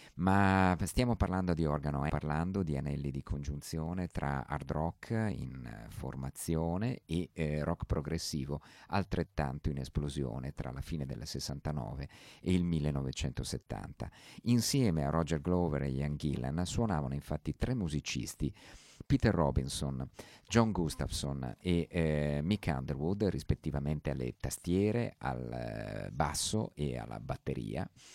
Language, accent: Italian, native